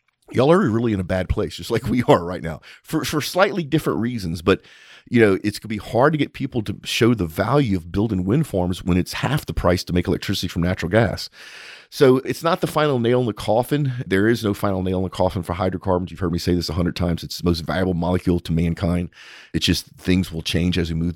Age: 40-59